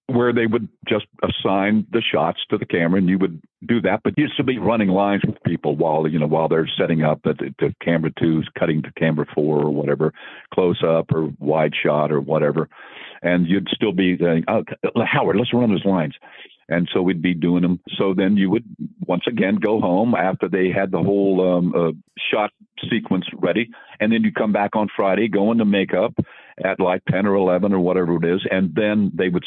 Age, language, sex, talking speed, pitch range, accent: 50-69, English, male, 215 wpm, 85-100 Hz, American